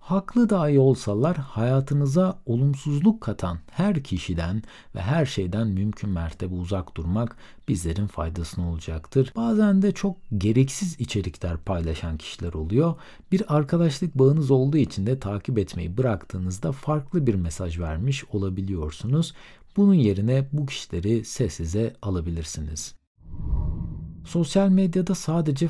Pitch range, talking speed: 95-150 Hz, 115 wpm